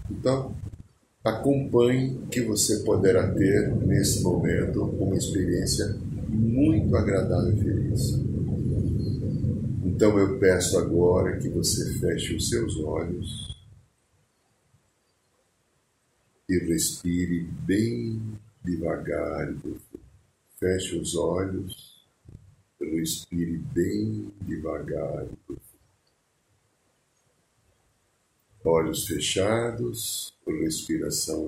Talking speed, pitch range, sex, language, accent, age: 70 wpm, 90-120 Hz, male, Portuguese, Brazilian, 60-79